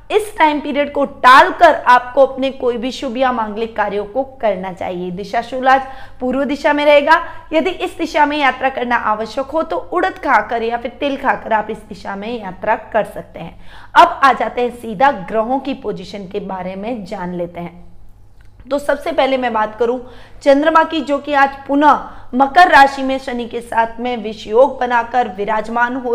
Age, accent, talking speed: 20-39, native, 190 wpm